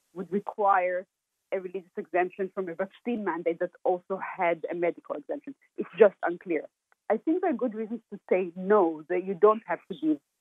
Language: English